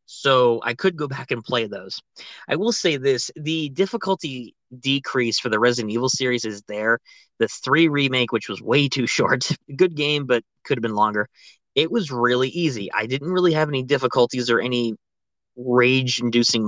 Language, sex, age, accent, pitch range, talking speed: English, male, 20-39, American, 115-145 Hz, 180 wpm